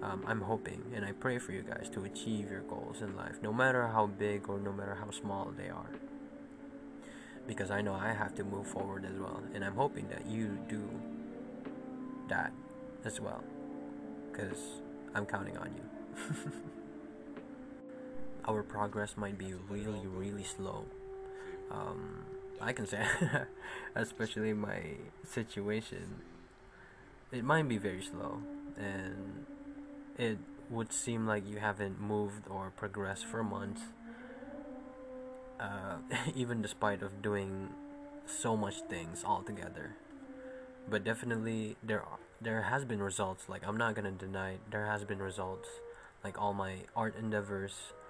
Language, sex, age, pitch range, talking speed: English, male, 20-39, 100-160 Hz, 140 wpm